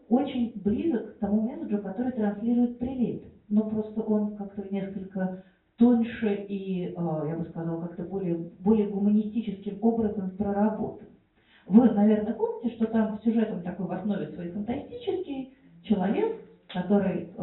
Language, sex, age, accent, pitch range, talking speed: Russian, female, 40-59, native, 180-225 Hz, 125 wpm